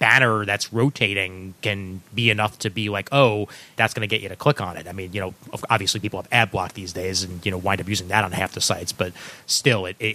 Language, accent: English, American